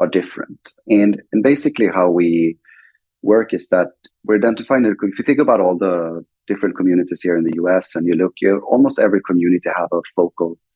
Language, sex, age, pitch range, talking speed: English, male, 30-49, 85-95 Hz, 190 wpm